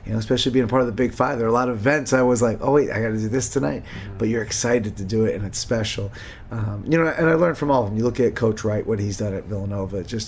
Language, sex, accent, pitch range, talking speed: English, male, American, 105-125 Hz, 325 wpm